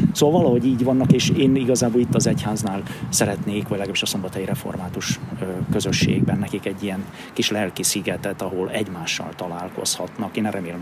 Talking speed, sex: 150 wpm, male